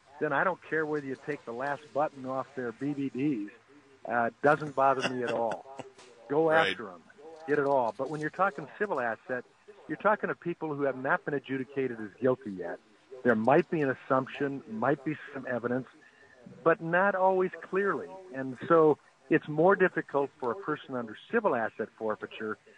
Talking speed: 180 wpm